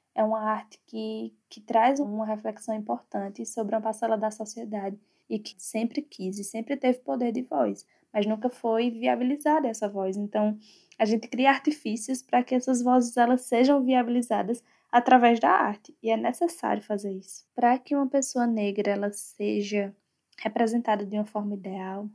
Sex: female